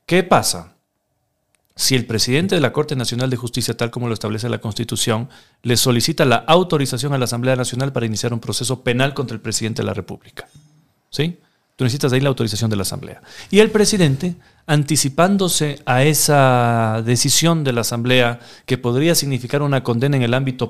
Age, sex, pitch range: 40-59, male, 120-150 Hz